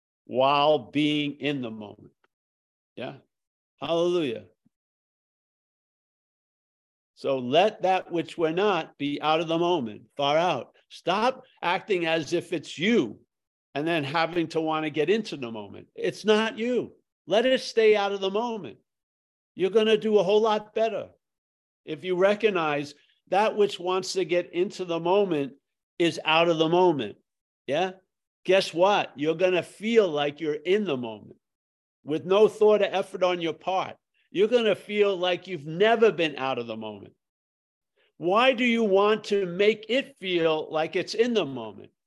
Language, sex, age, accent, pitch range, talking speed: English, male, 50-69, American, 150-215 Hz, 160 wpm